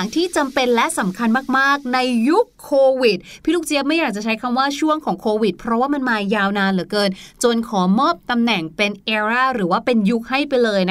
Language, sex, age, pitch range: Thai, female, 20-39, 220-290 Hz